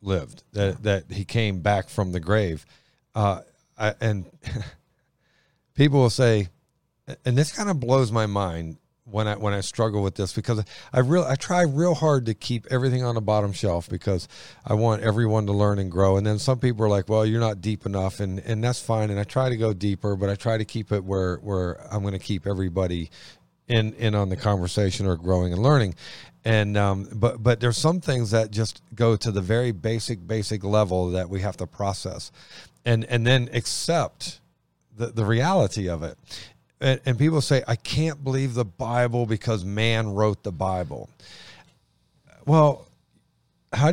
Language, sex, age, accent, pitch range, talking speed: English, male, 40-59, American, 100-125 Hz, 190 wpm